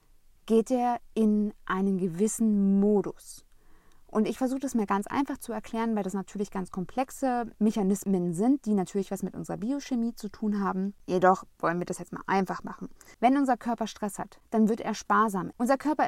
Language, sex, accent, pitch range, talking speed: German, female, German, 195-230 Hz, 185 wpm